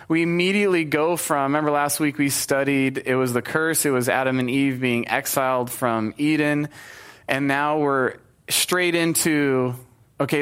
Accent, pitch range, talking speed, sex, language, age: American, 125-155 Hz, 160 wpm, male, English, 20-39